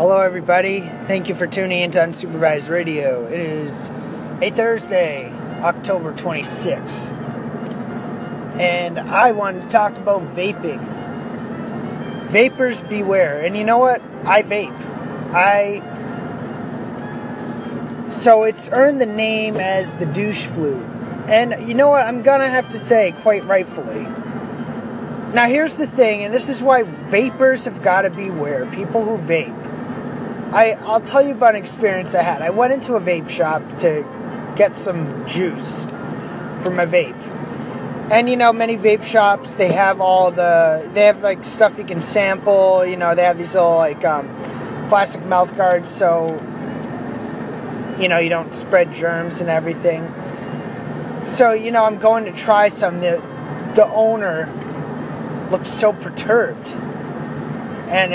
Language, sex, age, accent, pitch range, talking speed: English, male, 30-49, American, 180-230 Hz, 145 wpm